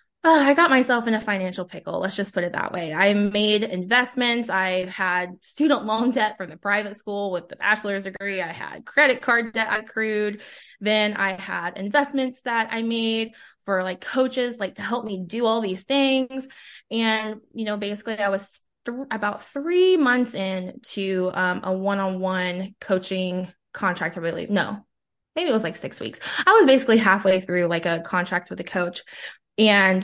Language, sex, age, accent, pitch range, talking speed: English, female, 20-39, American, 190-235 Hz, 180 wpm